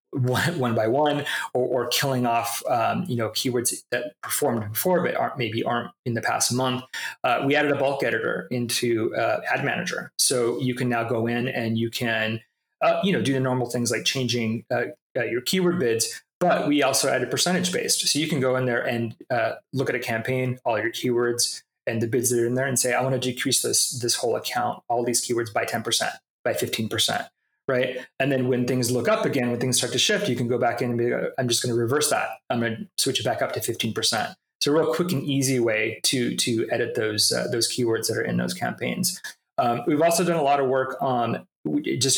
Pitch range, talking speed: 120-135 Hz, 235 wpm